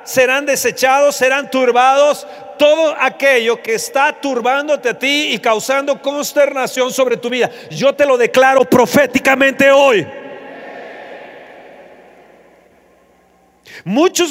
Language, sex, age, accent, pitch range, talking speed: Spanish, male, 50-69, Mexican, 230-290 Hz, 100 wpm